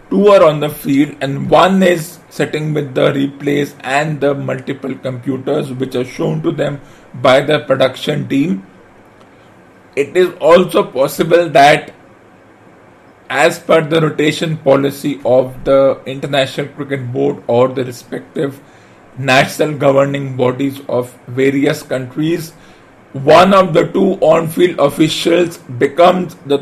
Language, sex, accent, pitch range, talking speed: English, male, Indian, 135-160 Hz, 130 wpm